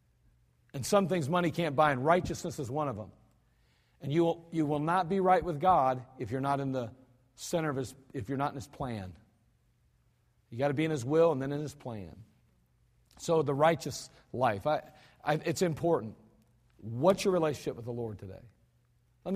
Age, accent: 50-69, American